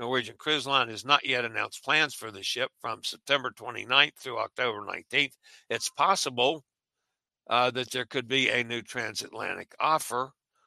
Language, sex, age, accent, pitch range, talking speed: English, male, 60-79, American, 125-155 Hz, 155 wpm